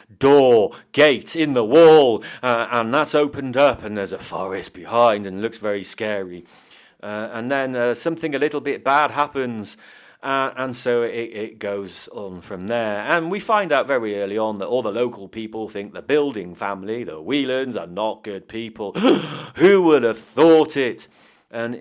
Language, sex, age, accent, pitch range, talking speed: English, male, 40-59, British, 105-140 Hz, 185 wpm